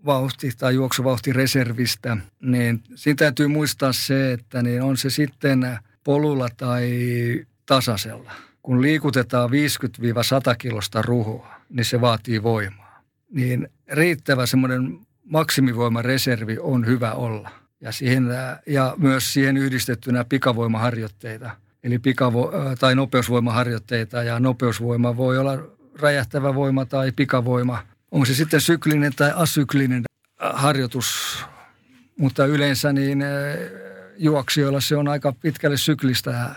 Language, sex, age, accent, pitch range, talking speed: Finnish, male, 50-69, native, 120-140 Hz, 110 wpm